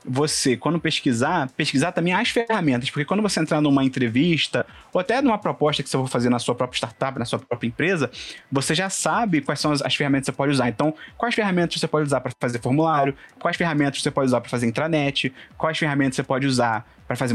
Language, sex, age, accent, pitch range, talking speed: Portuguese, male, 20-39, Brazilian, 135-170 Hz, 220 wpm